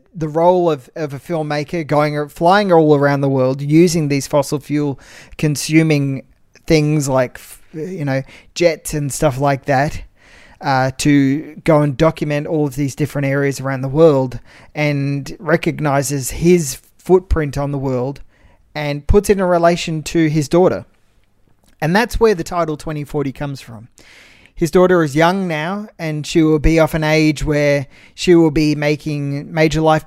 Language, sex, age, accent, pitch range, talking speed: English, male, 20-39, Australian, 140-165 Hz, 165 wpm